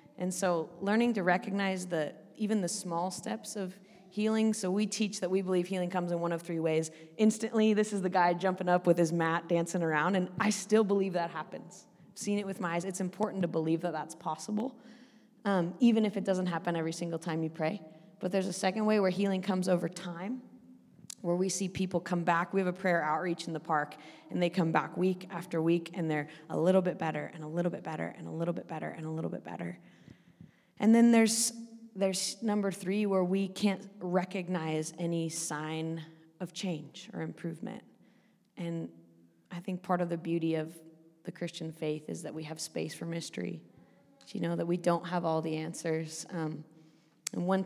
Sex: female